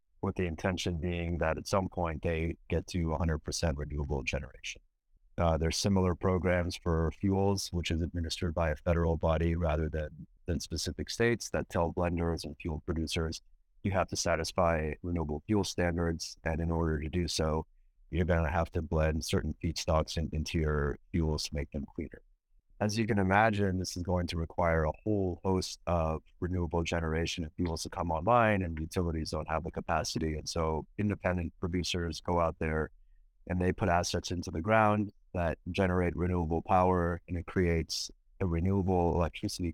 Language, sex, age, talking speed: English, male, 30-49, 175 wpm